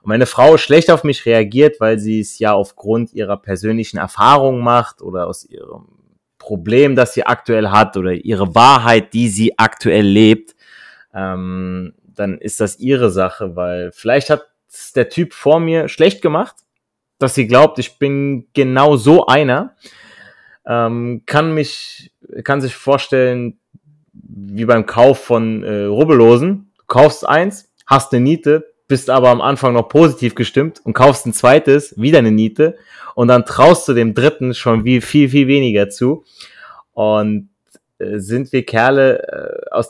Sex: male